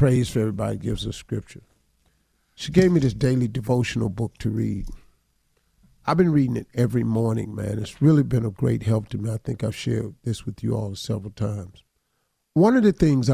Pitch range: 115-155 Hz